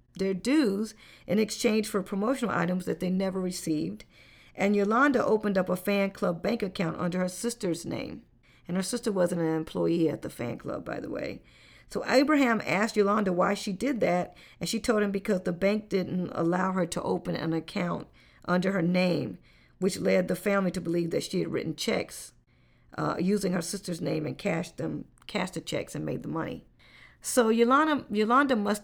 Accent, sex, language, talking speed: American, female, English, 190 wpm